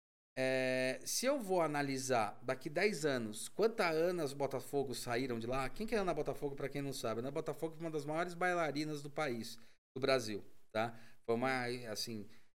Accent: Brazilian